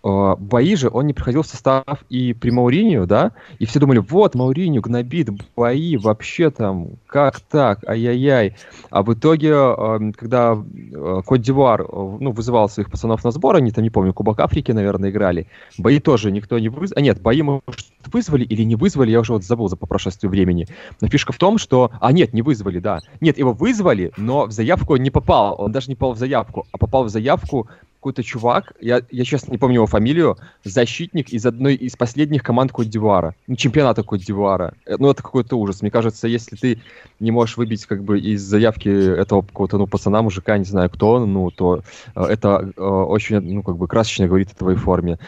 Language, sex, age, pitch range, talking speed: Russian, male, 20-39, 100-130 Hz, 195 wpm